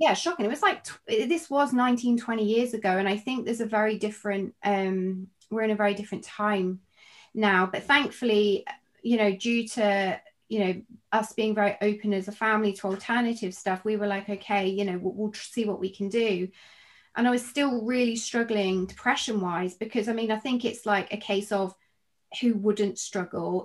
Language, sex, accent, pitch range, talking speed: English, female, British, 190-225 Hz, 200 wpm